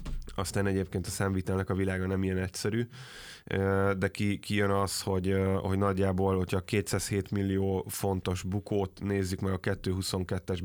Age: 20-39